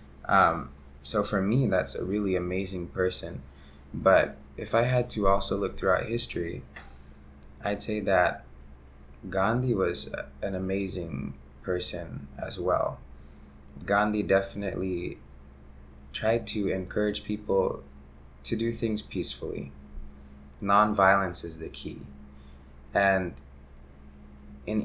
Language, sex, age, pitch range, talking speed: English, male, 20-39, 70-105 Hz, 105 wpm